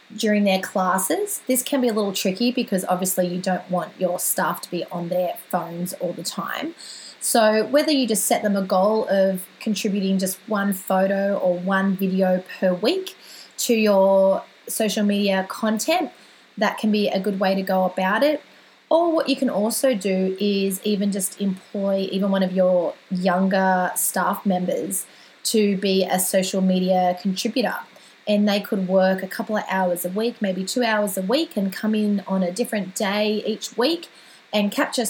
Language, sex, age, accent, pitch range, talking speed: English, female, 20-39, Australian, 185-215 Hz, 180 wpm